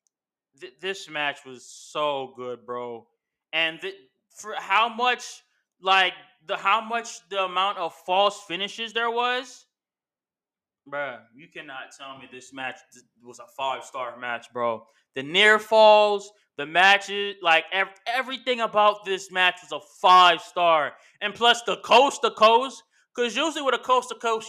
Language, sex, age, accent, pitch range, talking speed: English, male, 20-39, American, 175-245 Hz, 140 wpm